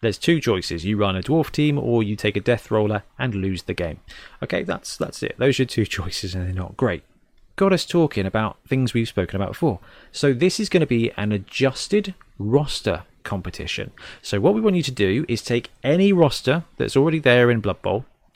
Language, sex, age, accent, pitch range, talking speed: English, male, 30-49, British, 105-145 Hz, 215 wpm